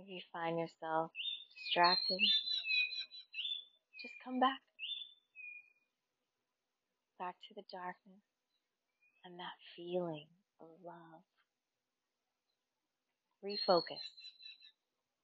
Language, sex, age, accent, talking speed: English, female, 30-49, American, 70 wpm